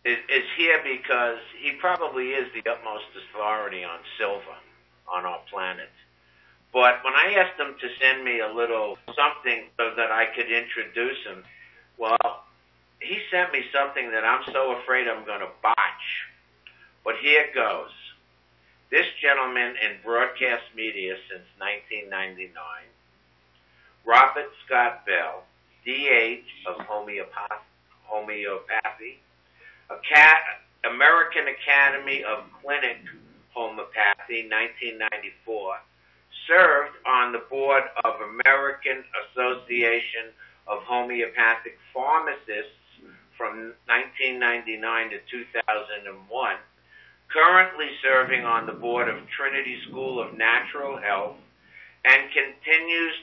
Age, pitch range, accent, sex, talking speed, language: 60-79, 105-130 Hz, American, male, 105 wpm, English